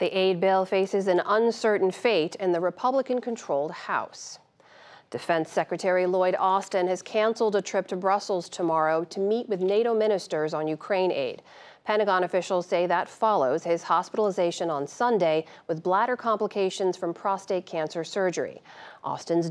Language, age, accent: English, 40-59, American